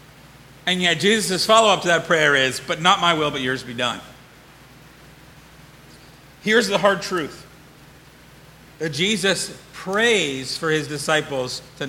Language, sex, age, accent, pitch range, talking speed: English, male, 50-69, American, 150-195 Hz, 135 wpm